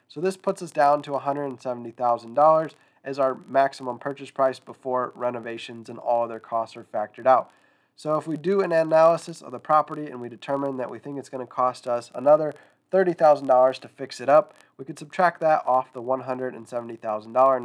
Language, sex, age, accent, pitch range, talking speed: English, male, 20-39, American, 125-150 Hz, 185 wpm